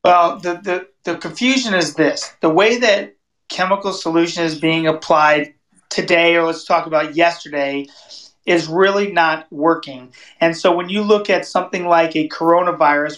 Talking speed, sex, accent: 155 wpm, male, American